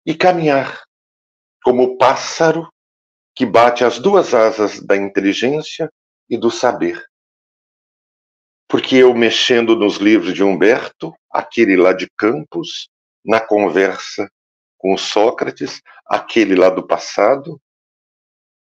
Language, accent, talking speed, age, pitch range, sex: Portuguese, Brazilian, 110 wpm, 50-69, 95-155 Hz, male